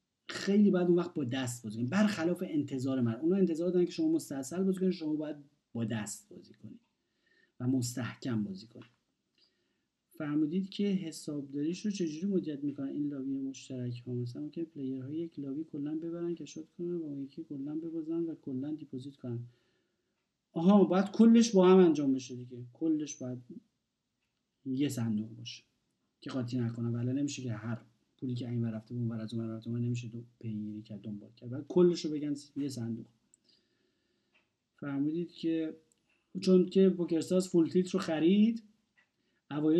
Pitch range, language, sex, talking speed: 120-165 Hz, Persian, male, 160 wpm